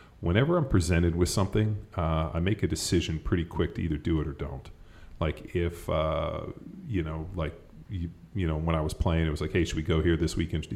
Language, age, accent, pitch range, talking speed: English, 30-49, American, 80-95 Hz, 230 wpm